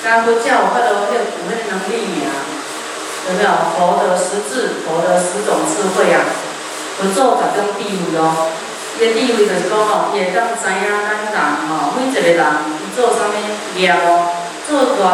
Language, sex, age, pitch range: Chinese, female, 30-49, 185-235 Hz